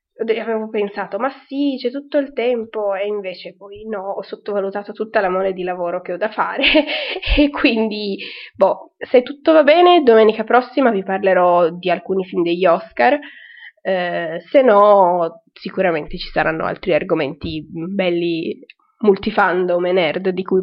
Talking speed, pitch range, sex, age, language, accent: 155 wpm, 190-255 Hz, female, 20-39, Italian, native